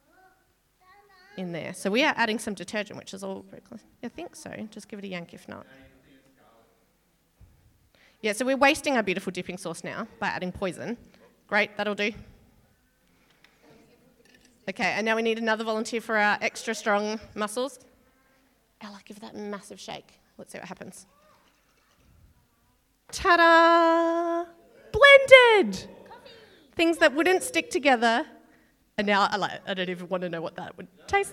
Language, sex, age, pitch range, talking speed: English, female, 30-49, 205-275 Hz, 155 wpm